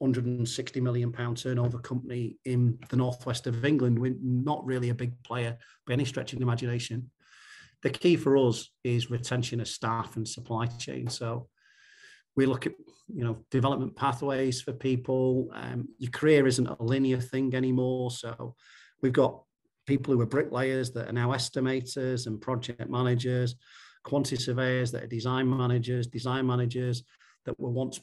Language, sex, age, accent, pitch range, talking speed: English, male, 40-59, British, 120-135 Hz, 165 wpm